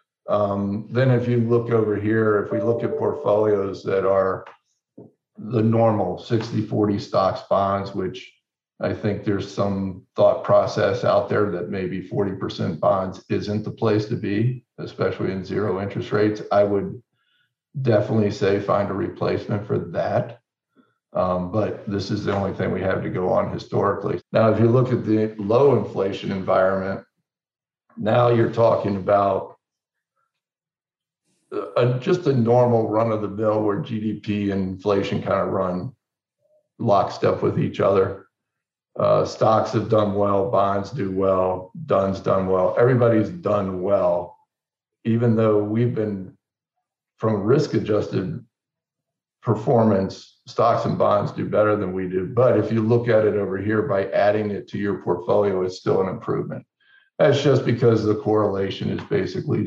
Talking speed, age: 150 wpm, 50-69